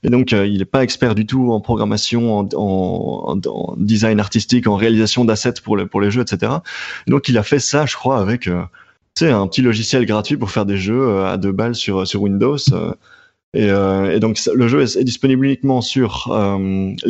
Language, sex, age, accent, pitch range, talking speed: French, male, 20-39, French, 105-135 Hz, 225 wpm